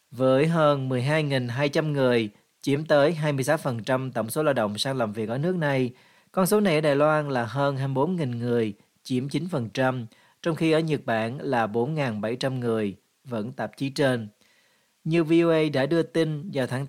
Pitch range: 125-155 Hz